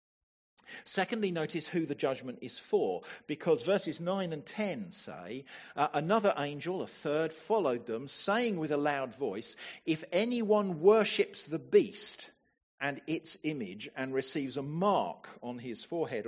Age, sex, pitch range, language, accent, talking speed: 50-69, male, 135-200 Hz, English, British, 145 wpm